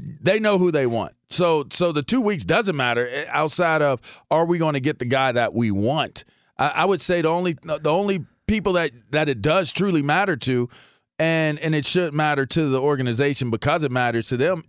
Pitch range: 125-165 Hz